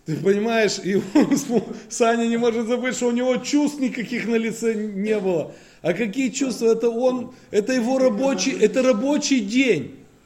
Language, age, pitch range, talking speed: Russian, 20-39, 175-245 Hz, 165 wpm